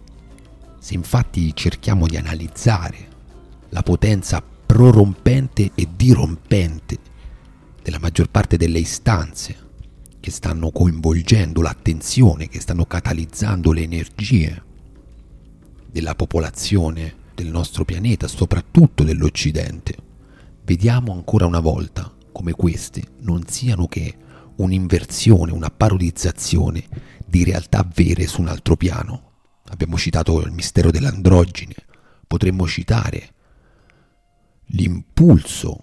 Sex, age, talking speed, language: male, 40-59, 95 wpm, Italian